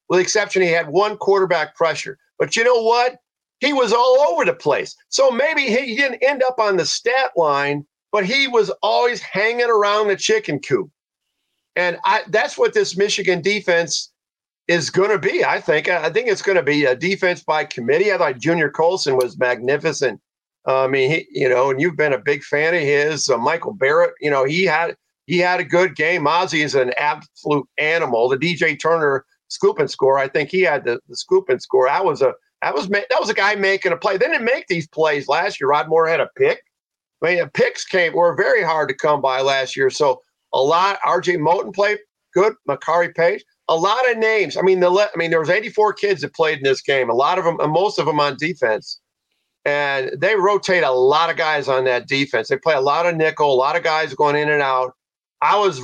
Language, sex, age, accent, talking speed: English, male, 50-69, American, 225 wpm